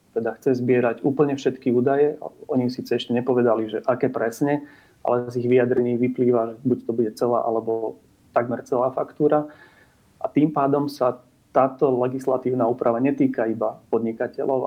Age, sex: 30-49, male